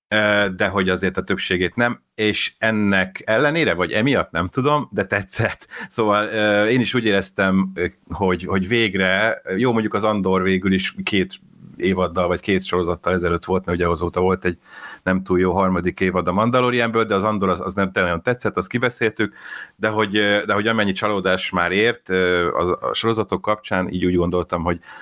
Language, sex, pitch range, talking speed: Hungarian, male, 85-105 Hz, 175 wpm